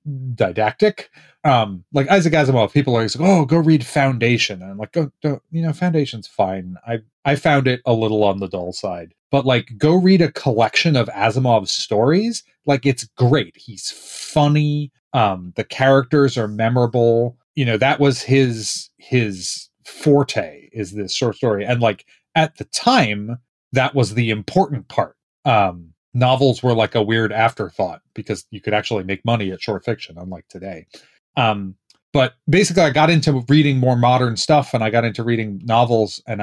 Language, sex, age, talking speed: English, male, 30-49, 175 wpm